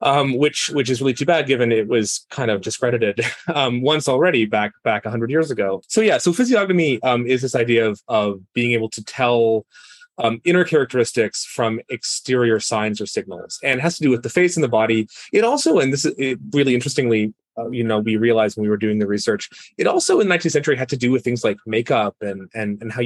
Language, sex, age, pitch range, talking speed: English, male, 30-49, 115-155 Hz, 235 wpm